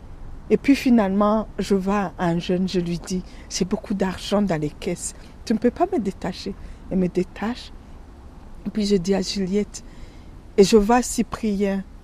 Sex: female